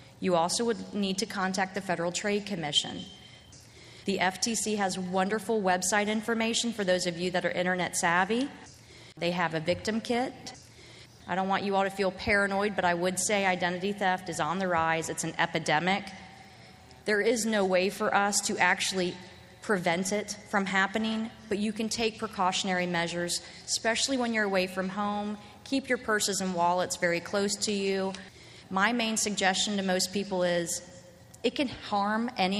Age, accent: 30-49, American